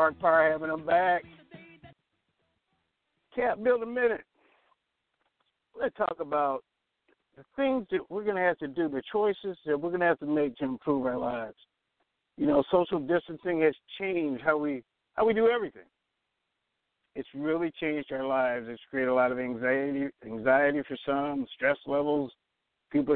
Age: 60-79